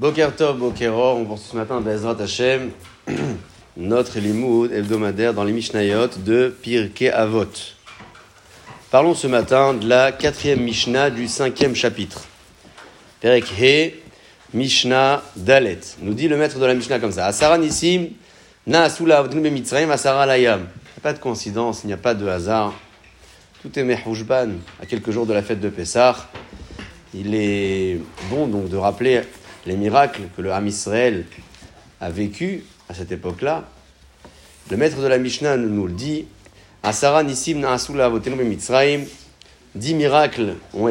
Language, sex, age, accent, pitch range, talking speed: French, male, 30-49, French, 105-140 Hz, 140 wpm